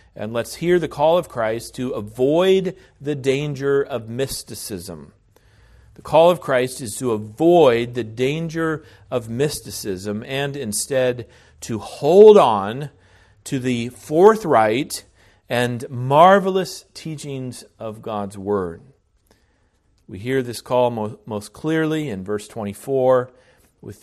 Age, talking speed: 40-59, 120 wpm